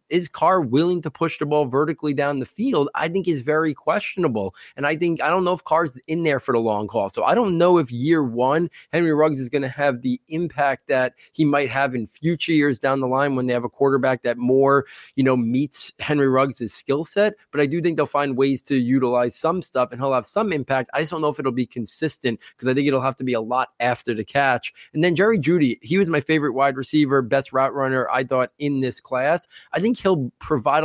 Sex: male